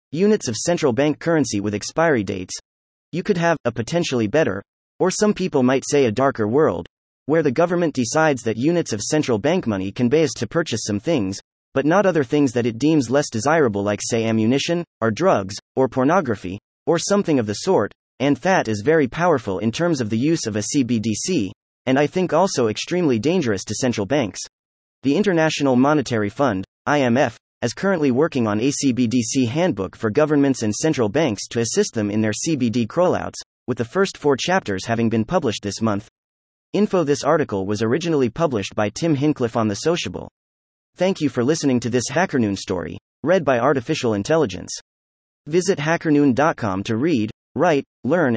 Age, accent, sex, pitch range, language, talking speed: 30-49, American, male, 110-160 Hz, English, 180 wpm